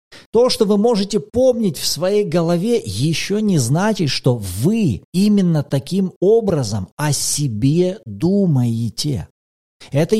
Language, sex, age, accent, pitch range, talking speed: Russian, male, 40-59, native, 130-200 Hz, 120 wpm